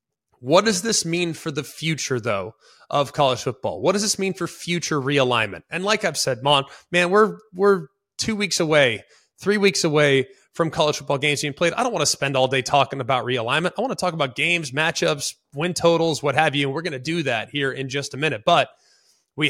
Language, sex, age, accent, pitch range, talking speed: English, male, 20-39, American, 140-170 Hz, 225 wpm